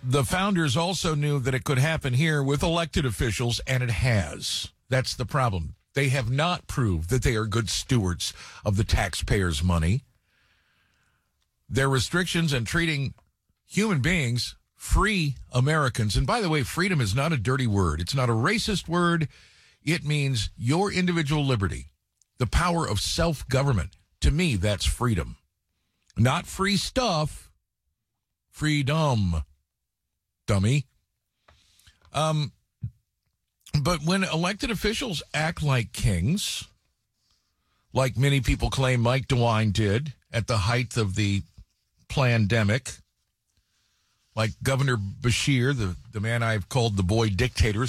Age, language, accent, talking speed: 50-69, English, American, 130 wpm